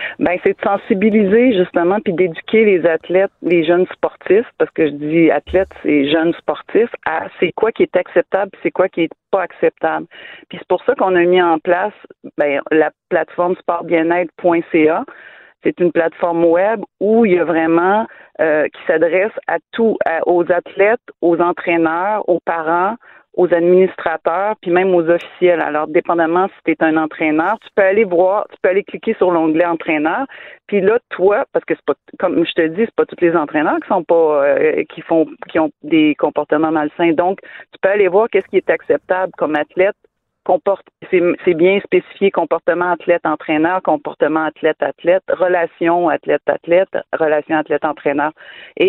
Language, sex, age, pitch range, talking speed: French, female, 40-59, 160-200 Hz, 175 wpm